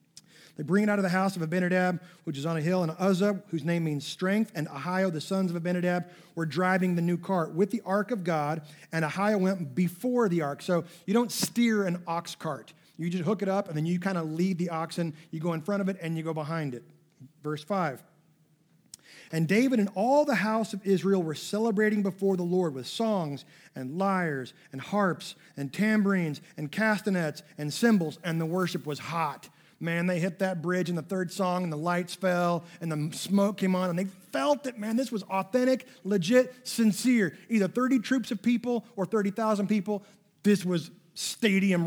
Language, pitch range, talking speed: English, 165-205 Hz, 205 wpm